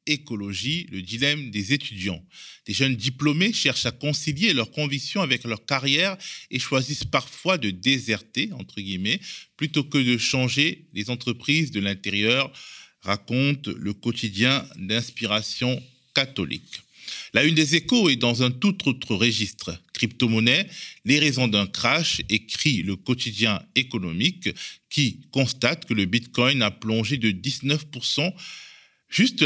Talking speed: 135 wpm